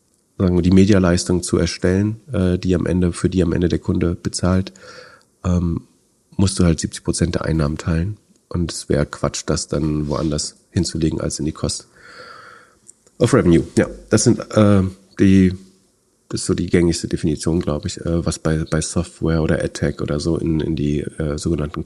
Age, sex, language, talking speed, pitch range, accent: 40-59, male, German, 170 wpm, 85-100 Hz, German